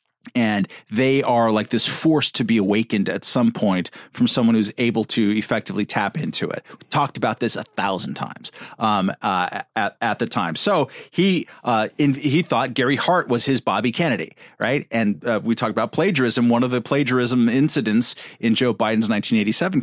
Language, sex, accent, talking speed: English, male, American, 190 wpm